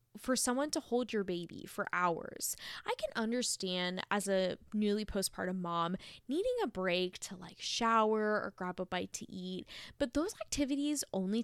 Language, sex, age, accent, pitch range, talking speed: English, female, 10-29, American, 185-260 Hz, 170 wpm